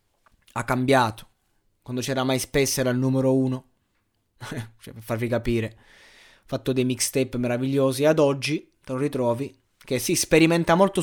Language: Italian